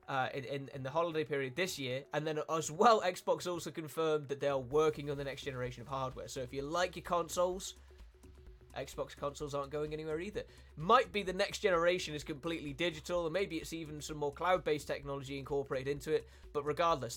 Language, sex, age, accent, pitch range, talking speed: French, male, 20-39, British, 140-165 Hz, 205 wpm